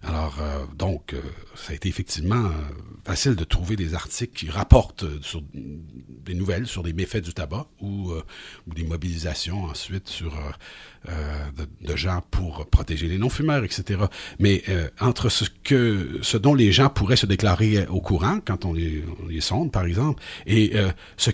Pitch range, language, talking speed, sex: 85-115 Hz, French, 190 wpm, male